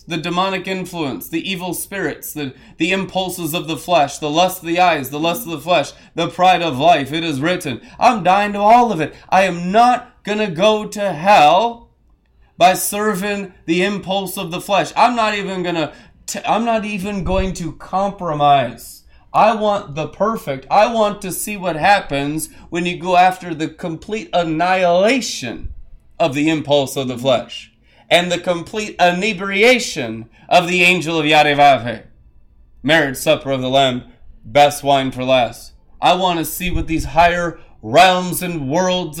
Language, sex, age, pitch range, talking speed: English, male, 30-49, 160-190 Hz, 170 wpm